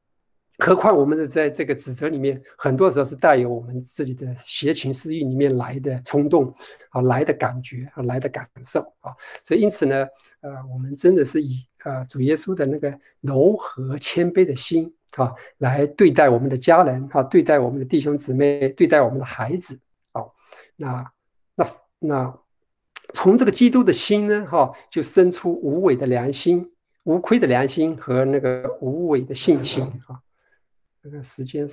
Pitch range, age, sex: 135-180 Hz, 50-69, male